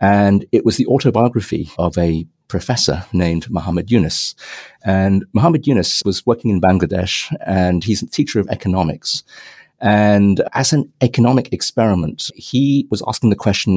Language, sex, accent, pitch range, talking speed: English, male, British, 90-110 Hz, 150 wpm